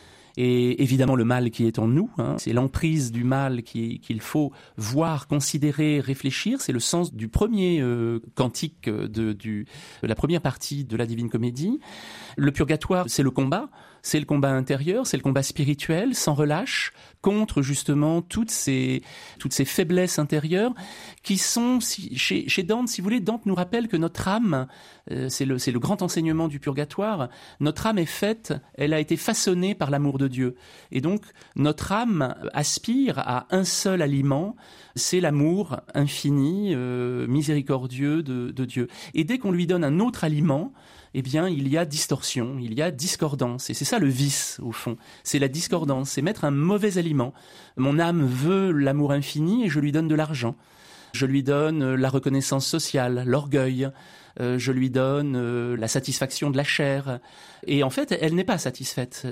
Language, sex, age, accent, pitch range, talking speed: French, male, 30-49, French, 135-175 Hz, 180 wpm